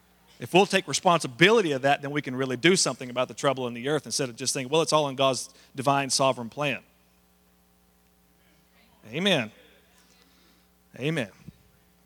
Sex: male